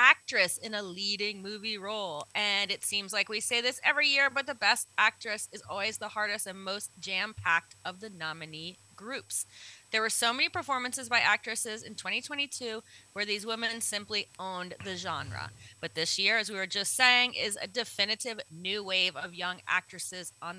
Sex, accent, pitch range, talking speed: female, American, 180-235 Hz, 185 wpm